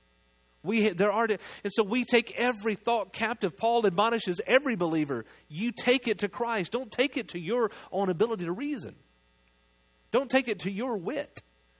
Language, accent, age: English, American, 40-59